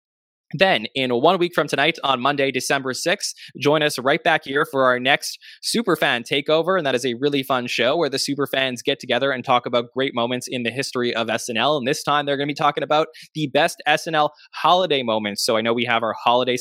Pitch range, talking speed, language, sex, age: 115-145 Hz, 225 wpm, English, male, 20-39